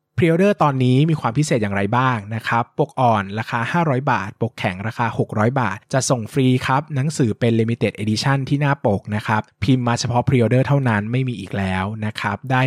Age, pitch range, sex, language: 20-39, 110-135 Hz, male, Thai